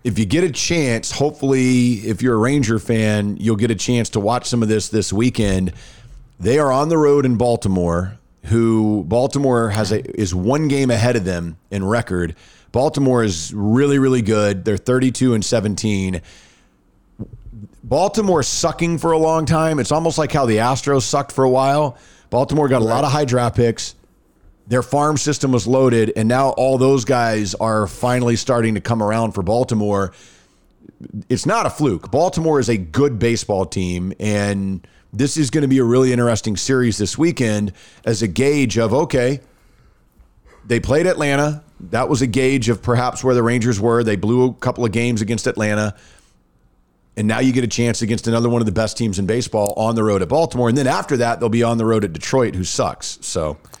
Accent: American